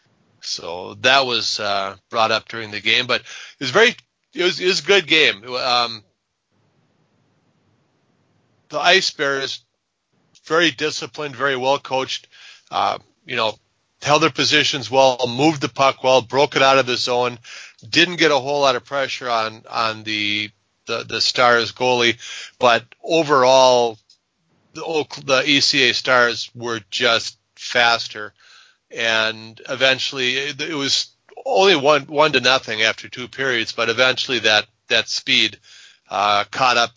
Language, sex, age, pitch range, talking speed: English, male, 40-59, 110-135 Hz, 145 wpm